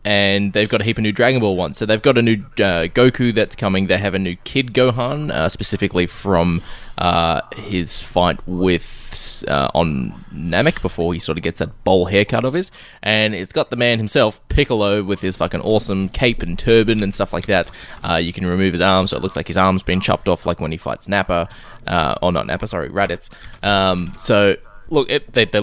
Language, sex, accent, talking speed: English, male, Australian, 220 wpm